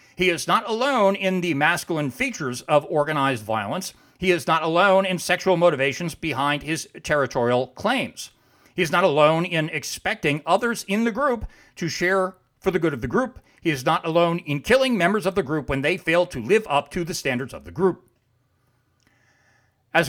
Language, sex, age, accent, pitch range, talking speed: English, male, 40-59, American, 130-180 Hz, 190 wpm